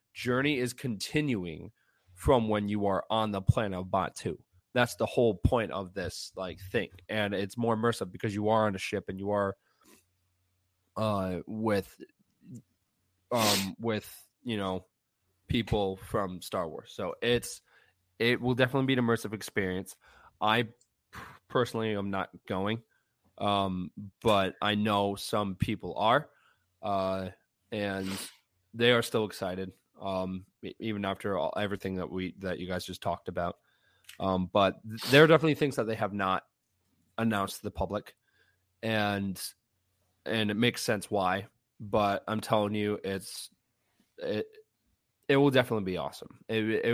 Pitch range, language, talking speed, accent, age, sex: 95-115 Hz, English, 150 wpm, American, 20-39, male